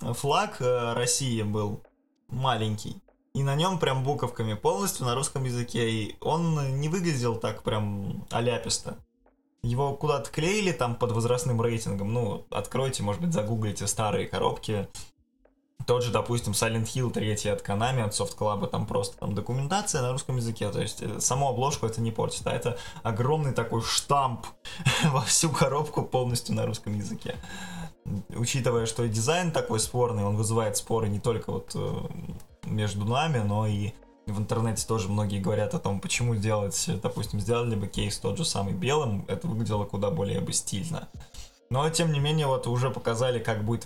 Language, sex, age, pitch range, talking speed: Russian, male, 20-39, 105-135 Hz, 165 wpm